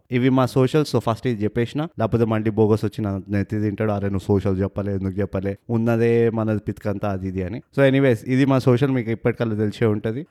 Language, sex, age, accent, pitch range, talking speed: Telugu, male, 20-39, native, 105-130 Hz, 190 wpm